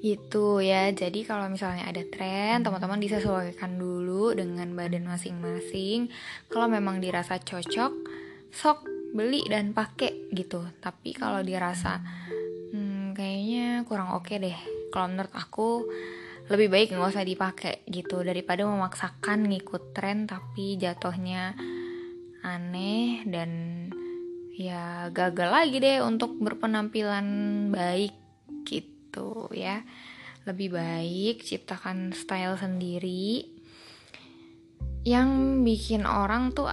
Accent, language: native, Indonesian